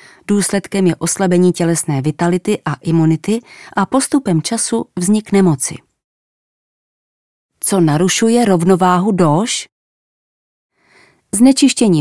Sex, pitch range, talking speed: female, 165-205 Hz, 85 wpm